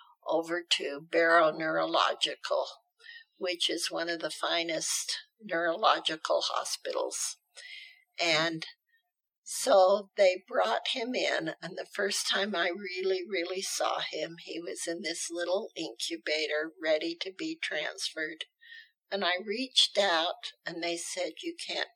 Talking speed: 125 wpm